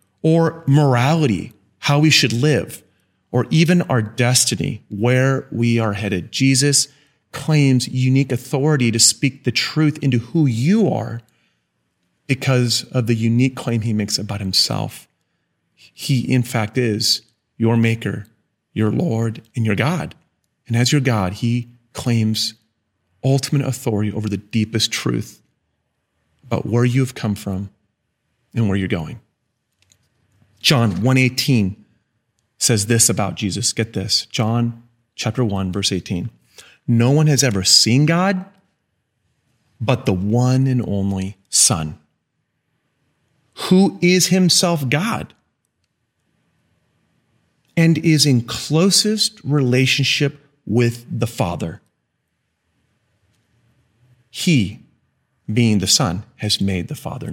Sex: male